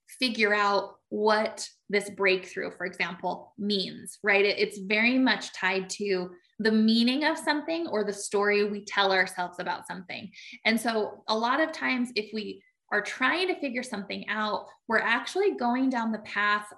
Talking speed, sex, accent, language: 170 wpm, female, American, English